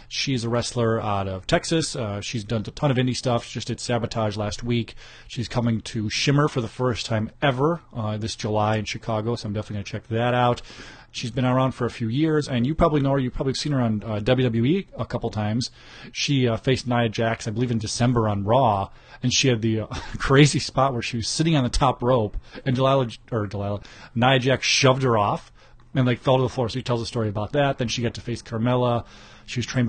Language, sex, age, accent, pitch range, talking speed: English, male, 30-49, American, 110-130 Hz, 245 wpm